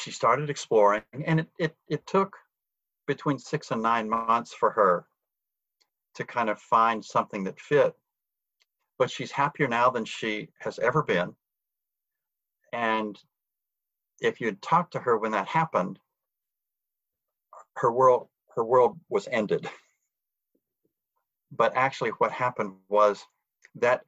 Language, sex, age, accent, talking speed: English, male, 50-69, American, 130 wpm